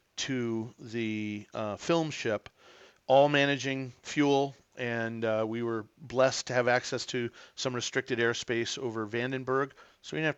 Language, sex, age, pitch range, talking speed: English, male, 40-59, 115-130 Hz, 150 wpm